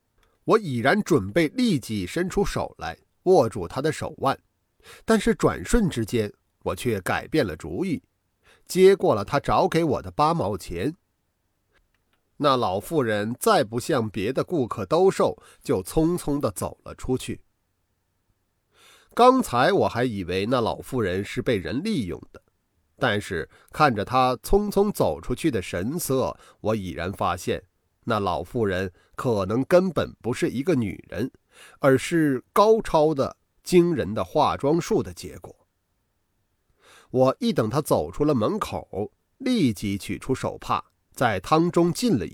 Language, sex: Chinese, male